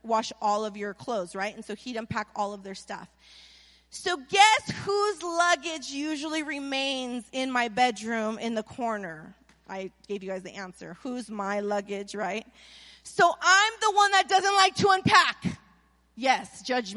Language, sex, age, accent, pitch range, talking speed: English, female, 30-49, American, 240-360 Hz, 165 wpm